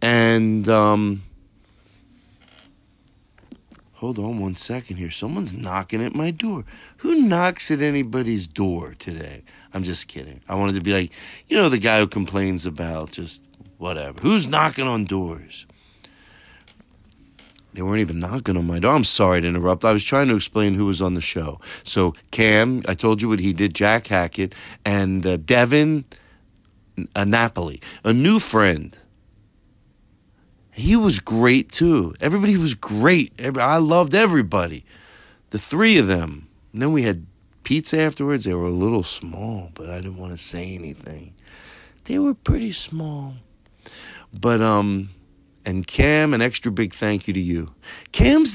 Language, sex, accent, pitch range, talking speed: English, male, American, 90-125 Hz, 155 wpm